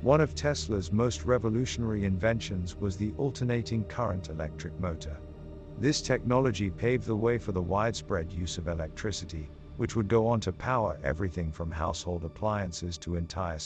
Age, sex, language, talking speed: 50-69, male, English, 155 wpm